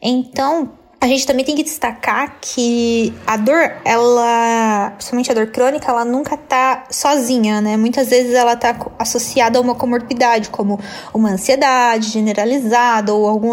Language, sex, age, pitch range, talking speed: Portuguese, female, 20-39, 230-275 Hz, 150 wpm